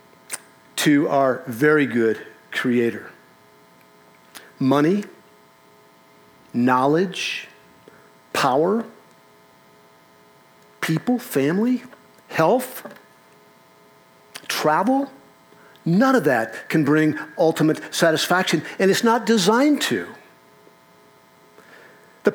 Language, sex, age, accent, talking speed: English, male, 50-69, American, 65 wpm